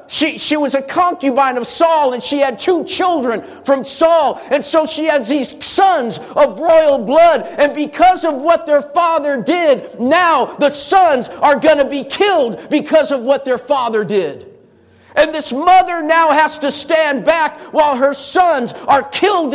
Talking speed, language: 175 wpm, English